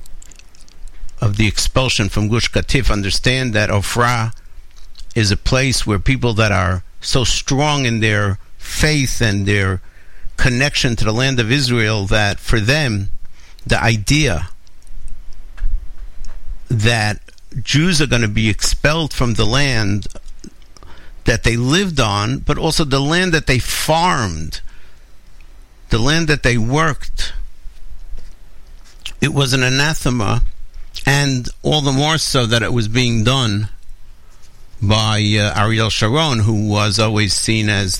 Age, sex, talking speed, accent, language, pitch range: 60-79, male, 130 wpm, American, English, 95-125 Hz